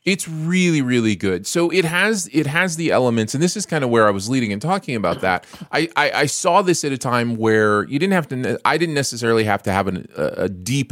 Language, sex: English, male